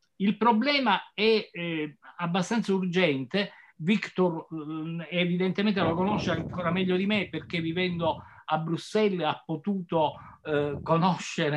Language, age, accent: Italian, 50-69, native